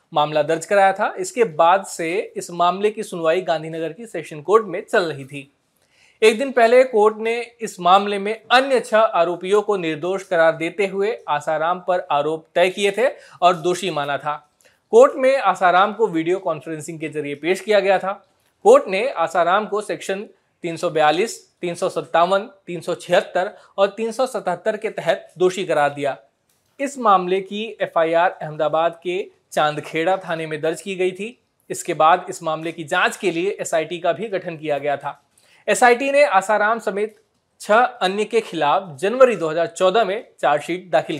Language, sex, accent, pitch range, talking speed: Hindi, male, native, 160-210 Hz, 165 wpm